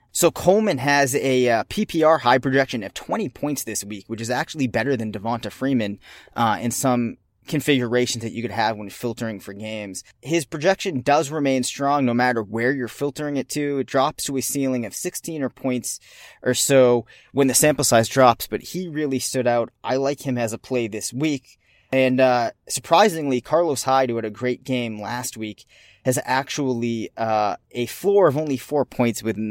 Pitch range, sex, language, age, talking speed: 115-135 Hz, male, English, 20-39, 195 wpm